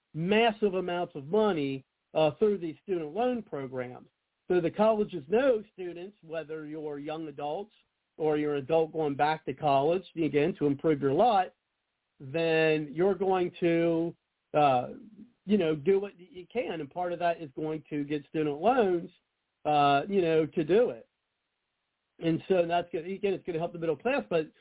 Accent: American